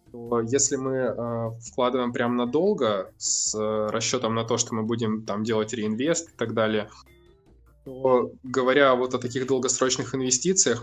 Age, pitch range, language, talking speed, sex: 20-39, 110-125 Hz, Russian, 150 wpm, male